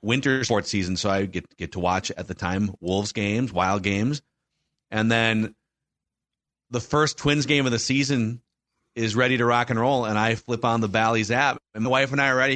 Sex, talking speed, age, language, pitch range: male, 215 wpm, 30-49, English, 110-150 Hz